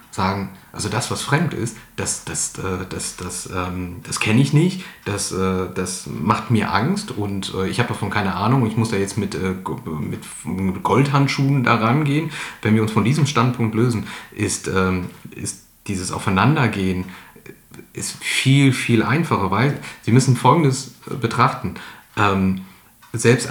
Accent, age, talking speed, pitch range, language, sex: German, 40-59, 145 wpm, 105-140 Hz, English, male